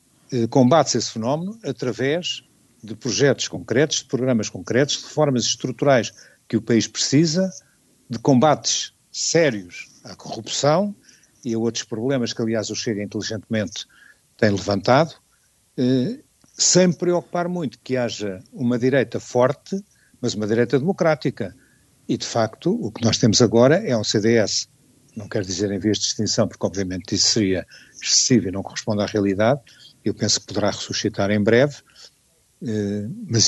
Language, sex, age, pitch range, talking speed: Portuguese, male, 60-79, 110-140 Hz, 145 wpm